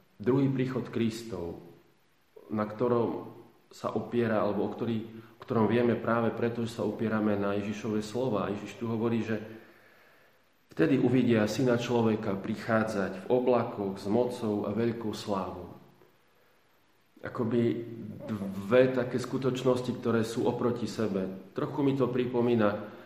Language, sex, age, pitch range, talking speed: Slovak, male, 40-59, 105-120 Hz, 130 wpm